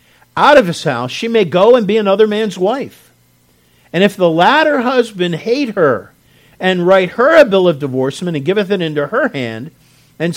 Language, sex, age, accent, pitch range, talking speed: English, male, 50-69, American, 140-195 Hz, 190 wpm